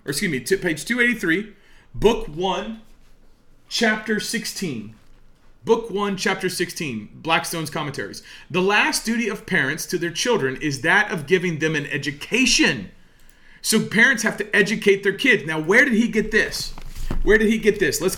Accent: American